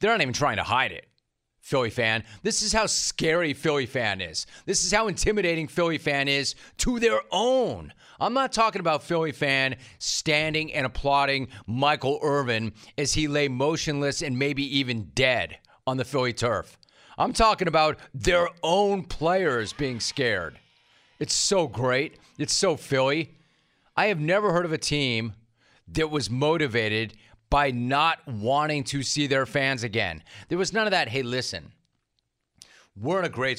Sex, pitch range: male, 125-165 Hz